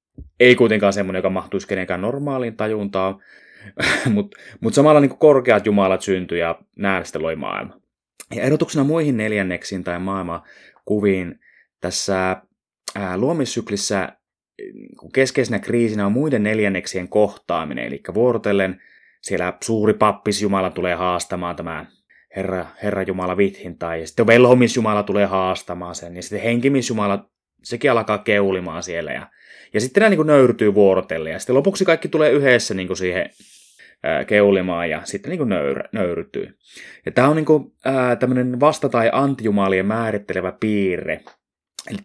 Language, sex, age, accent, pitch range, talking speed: Finnish, male, 20-39, native, 95-120 Hz, 135 wpm